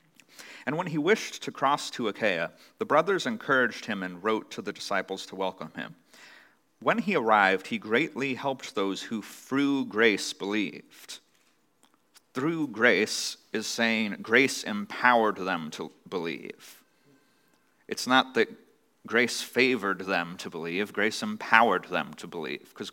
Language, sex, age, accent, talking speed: English, male, 30-49, American, 140 wpm